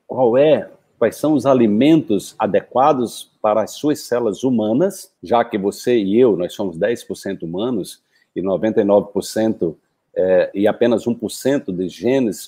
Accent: Brazilian